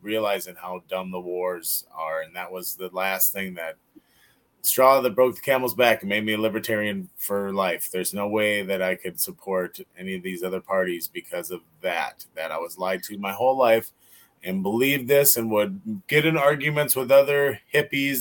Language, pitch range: English, 95-130 Hz